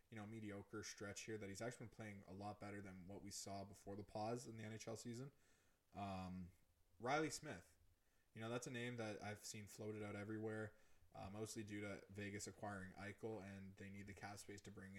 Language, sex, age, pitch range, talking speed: English, male, 20-39, 95-110 Hz, 210 wpm